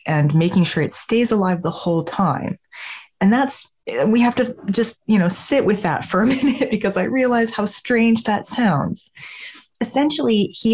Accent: American